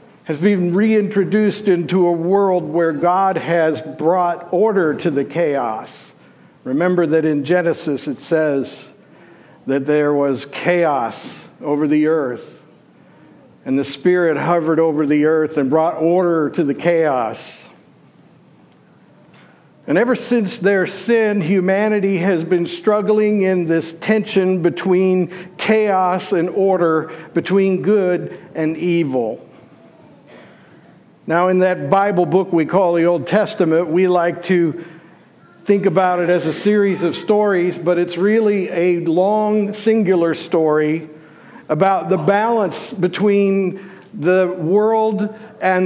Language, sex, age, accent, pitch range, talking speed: English, male, 60-79, American, 165-195 Hz, 125 wpm